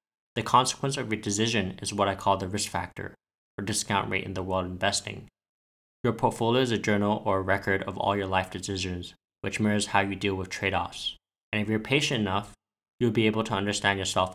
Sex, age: male, 20-39